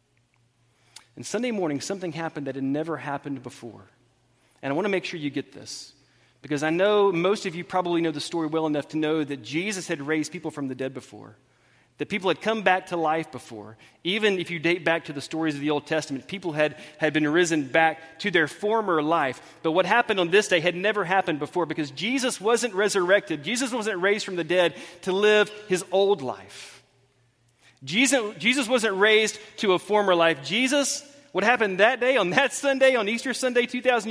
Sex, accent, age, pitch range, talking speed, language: male, American, 30-49, 145-225 Hz, 205 wpm, English